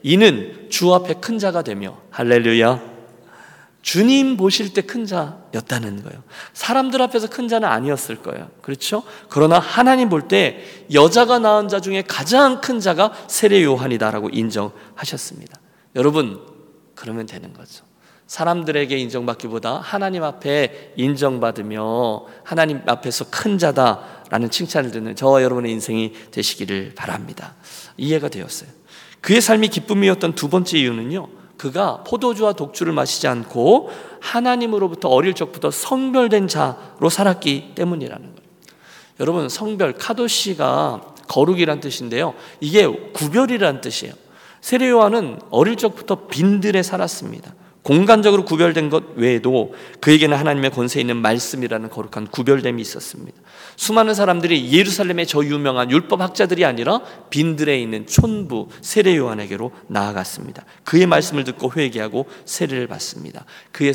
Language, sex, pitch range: Korean, male, 125-205 Hz